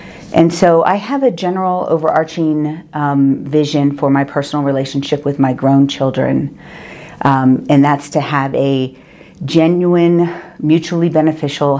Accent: American